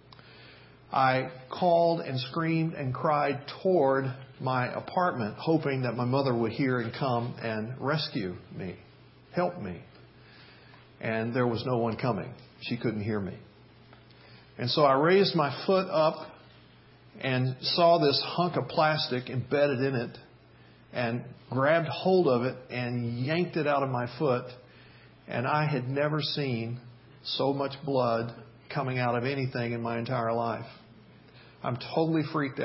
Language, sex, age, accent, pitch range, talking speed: English, male, 50-69, American, 120-155 Hz, 145 wpm